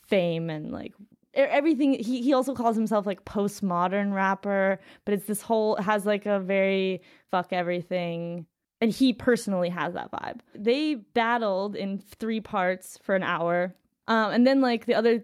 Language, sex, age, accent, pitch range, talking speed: English, female, 20-39, American, 185-230 Hz, 165 wpm